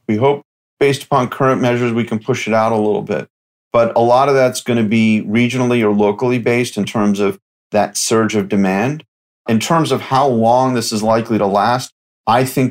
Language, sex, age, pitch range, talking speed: English, male, 40-59, 110-130 Hz, 210 wpm